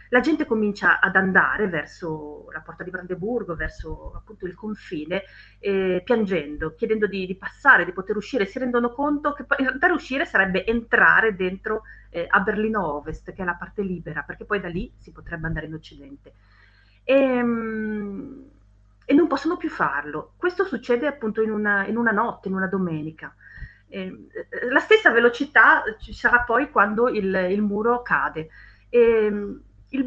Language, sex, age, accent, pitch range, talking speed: Italian, female, 30-49, native, 180-255 Hz, 165 wpm